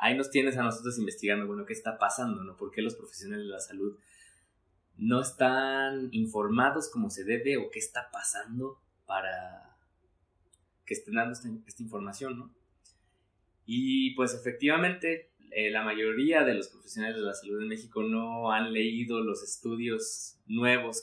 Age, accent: 20-39, Mexican